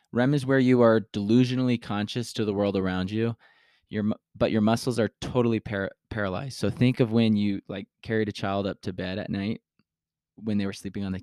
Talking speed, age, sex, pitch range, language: 210 wpm, 20-39, male, 95-120 Hz, English